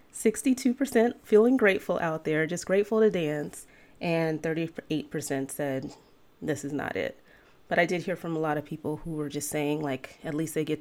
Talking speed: 185 wpm